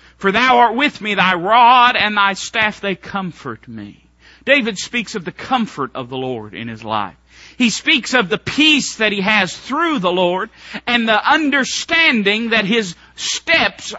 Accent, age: American, 40-59